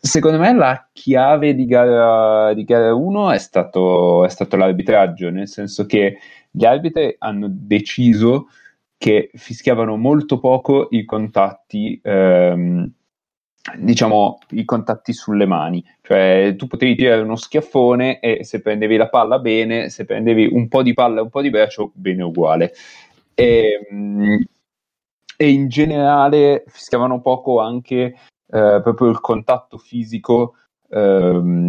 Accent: native